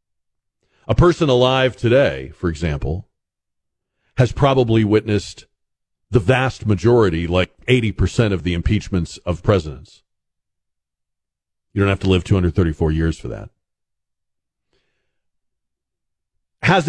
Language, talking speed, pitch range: English, 105 wpm, 95-130 Hz